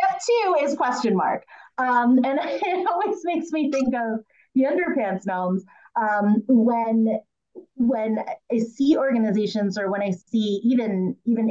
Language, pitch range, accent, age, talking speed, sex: English, 185-245 Hz, American, 30-49, 145 wpm, female